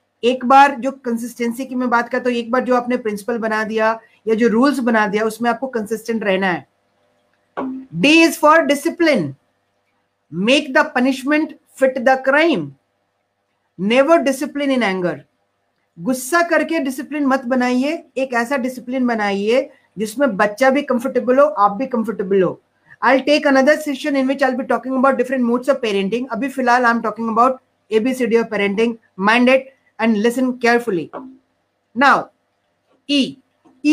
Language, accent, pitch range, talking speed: Hindi, native, 210-270 Hz, 125 wpm